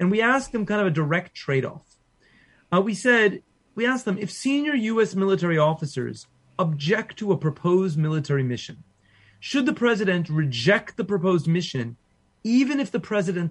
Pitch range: 150-220 Hz